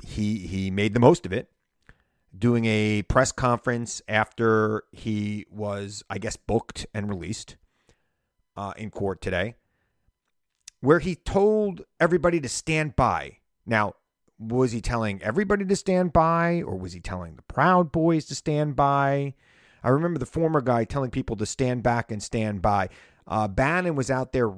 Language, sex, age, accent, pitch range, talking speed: English, male, 40-59, American, 100-140 Hz, 160 wpm